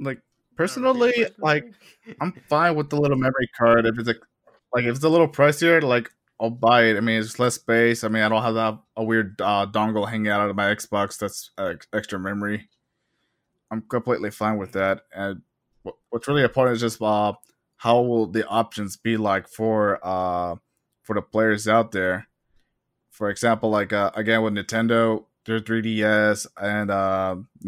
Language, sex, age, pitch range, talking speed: English, male, 20-39, 105-120 Hz, 180 wpm